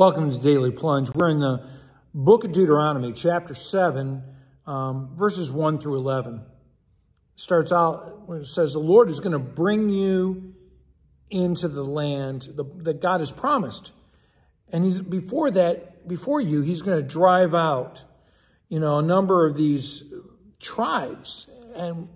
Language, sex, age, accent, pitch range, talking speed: English, male, 50-69, American, 145-185 Hz, 155 wpm